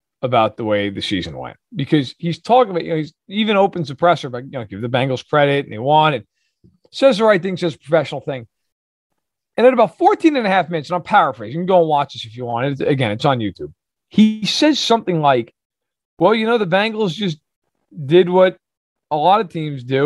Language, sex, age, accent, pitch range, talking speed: English, male, 40-59, American, 140-190 Hz, 225 wpm